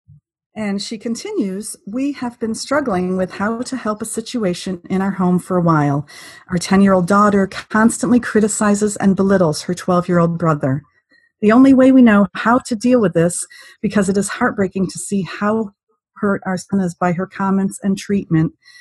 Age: 40-59